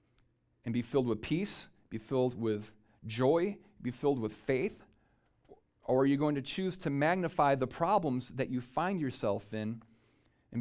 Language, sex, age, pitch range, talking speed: English, male, 40-59, 120-160 Hz, 165 wpm